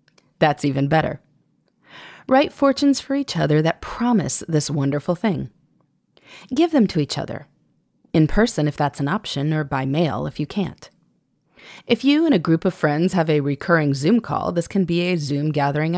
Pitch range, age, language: 150-250 Hz, 30-49, English